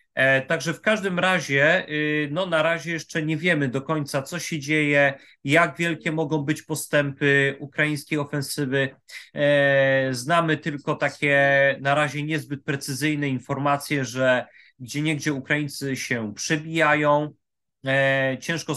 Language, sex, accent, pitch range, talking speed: Polish, male, native, 140-160 Hz, 115 wpm